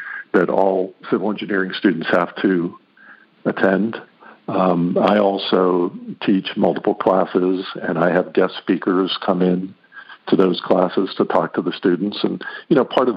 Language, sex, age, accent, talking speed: English, male, 50-69, American, 155 wpm